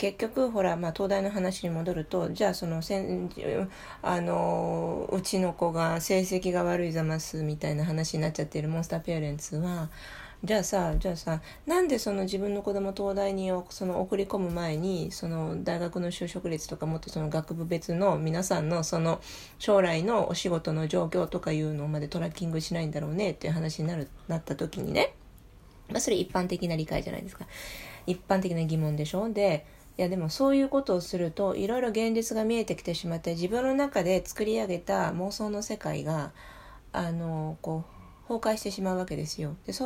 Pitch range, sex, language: 160-200 Hz, female, Japanese